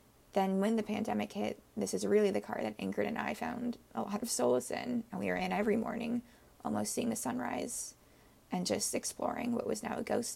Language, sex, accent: English, female, American